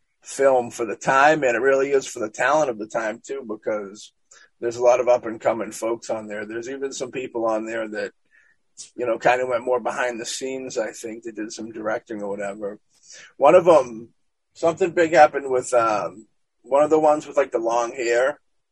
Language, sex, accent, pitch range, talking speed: English, male, American, 110-140 Hz, 220 wpm